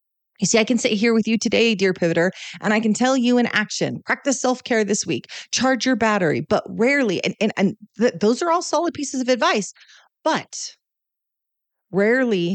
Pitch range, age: 185-240 Hz, 40-59